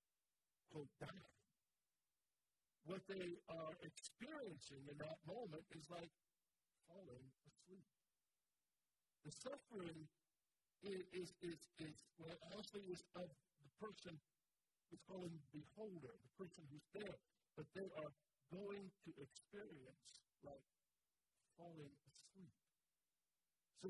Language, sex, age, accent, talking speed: English, male, 50-69, American, 110 wpm